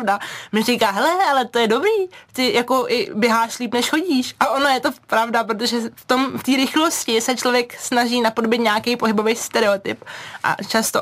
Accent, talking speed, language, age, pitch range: native, 185 wpm, Czech, 20-39, 195-245 Hz